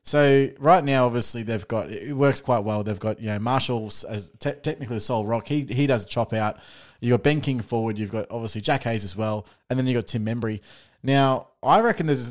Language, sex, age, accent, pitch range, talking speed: English, male, 20-39, Australian, 110-135 Hz, 240 wpm